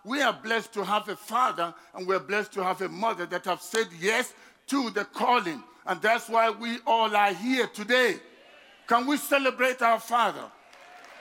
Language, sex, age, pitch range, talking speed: English, male, 50-69, 195-245 Hz, 185 wpm